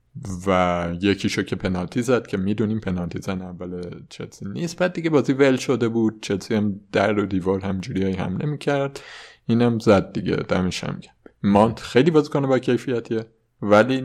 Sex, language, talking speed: male, Persian, 165 wpm